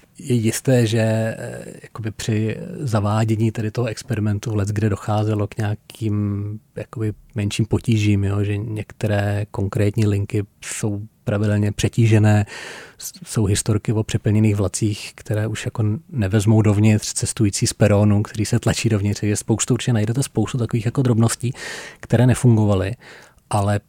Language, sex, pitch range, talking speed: Czech, male, 105-120 Hz, 120 wpm